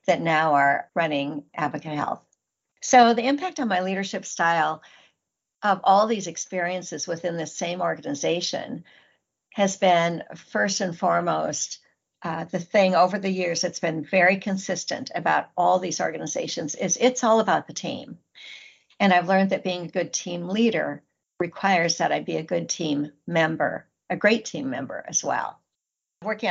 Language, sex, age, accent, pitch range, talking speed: English, female, 60-79, American, 165-195 Hz, 160 wpm